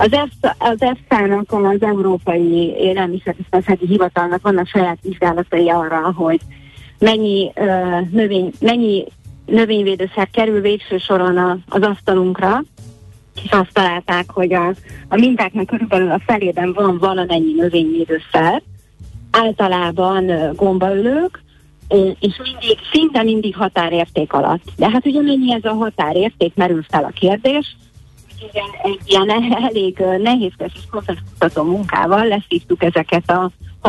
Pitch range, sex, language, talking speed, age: 170-210 Hz, female, Hungarian, 120 wpm, 30-49